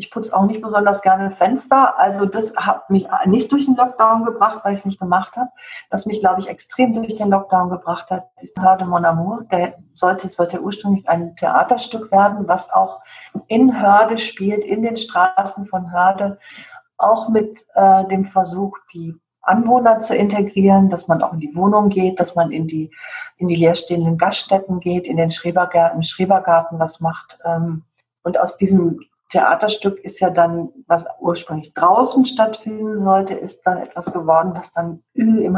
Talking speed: 175 wpm